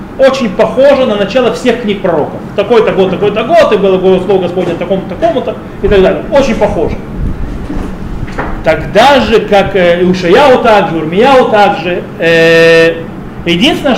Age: 30-49